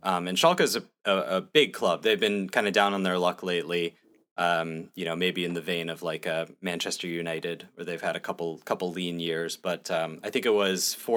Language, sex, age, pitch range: English, male, 30-49, 90-100 Hz